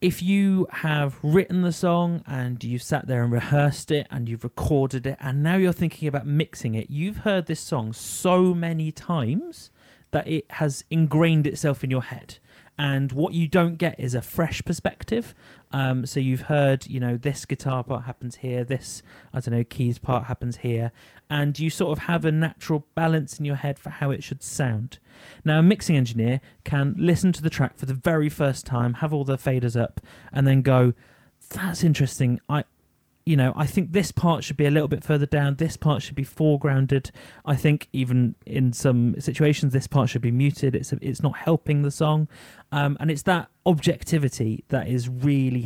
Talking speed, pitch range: 200 wpm, 125-160 Hz